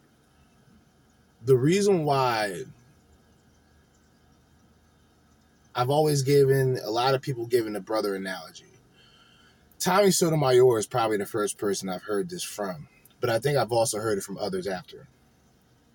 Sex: male